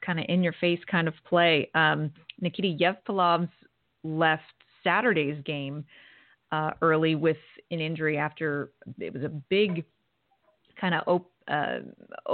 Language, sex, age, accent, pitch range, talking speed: English, female, 30-49, American, 155-175 Hz, 125 wpm